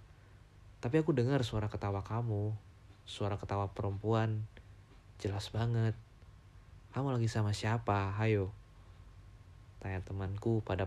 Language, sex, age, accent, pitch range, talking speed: Indonesian, male, 20-39, native, 95-110 Hz, 105 wpm